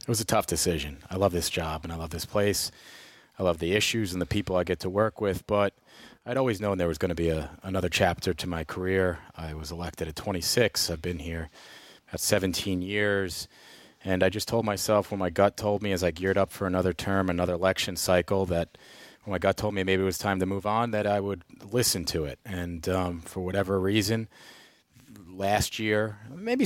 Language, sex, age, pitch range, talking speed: English, male, 30-49, 90-105 Hz, 225 wpm